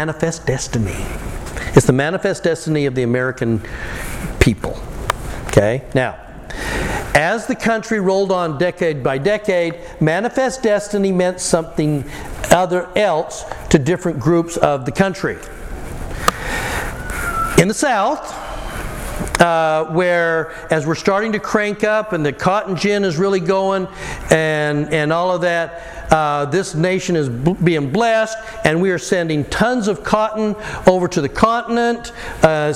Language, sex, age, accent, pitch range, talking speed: English, male, 60-79, American, 160-205 Hz, 135 wpm